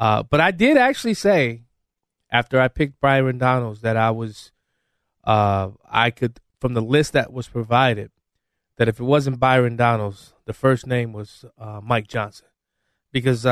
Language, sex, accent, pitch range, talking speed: English, male, American, 110-140 Hz, 165 wpm